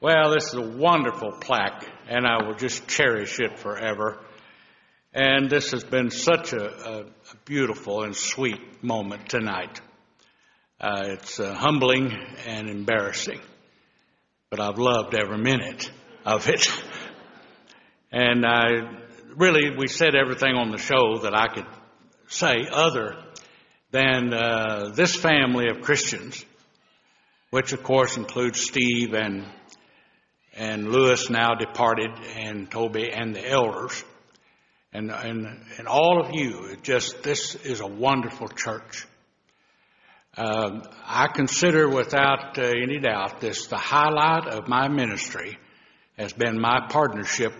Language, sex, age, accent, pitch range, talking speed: English, male, 60-79, American, 110-135 Hz, 125 wpm